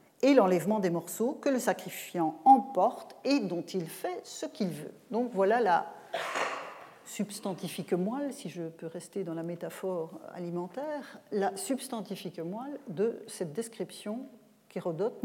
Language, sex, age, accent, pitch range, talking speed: French, female, 40-59, French, 190-265 Hz, 140 wpm